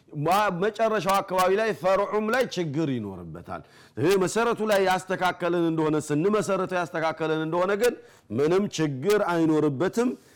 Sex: male